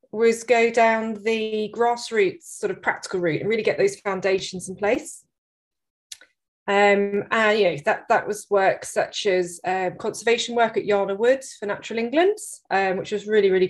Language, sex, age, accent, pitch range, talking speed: English, female, 20-39, British, 195-245 Hz, 175 wpm